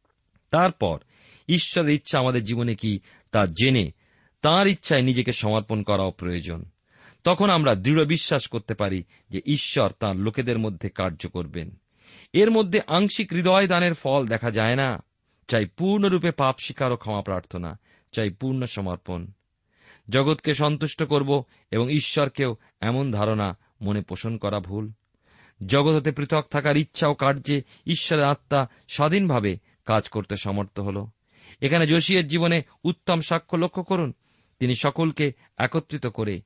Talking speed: 130 wpm